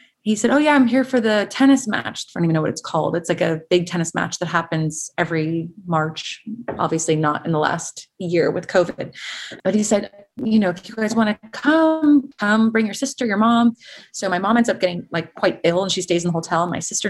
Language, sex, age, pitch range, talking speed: English, female, 20-39, 170-215 Hz, 240 wpm